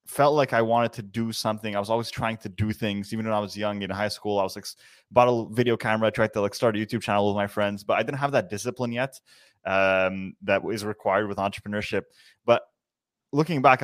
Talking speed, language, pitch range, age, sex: 240 wpm, English, 105-120 Hz, 20-39, male